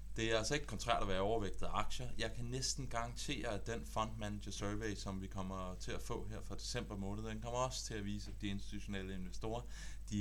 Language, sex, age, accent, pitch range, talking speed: Danish, male, 30-49, native, 95-110 Hz, 225 wpm